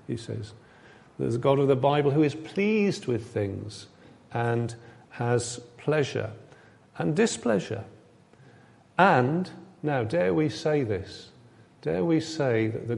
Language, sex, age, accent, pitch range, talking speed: English, male, 40-59, British, 115-145 Hz, 135 wpm